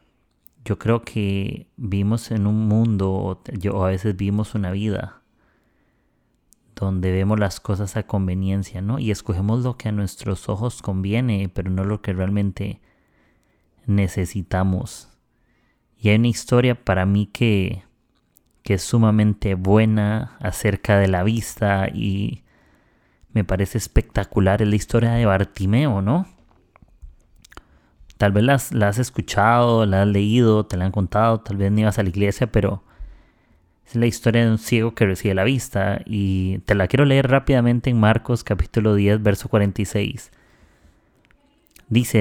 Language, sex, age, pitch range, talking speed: Spanish, male, 30-49, 100-115 Hz, 145 wpm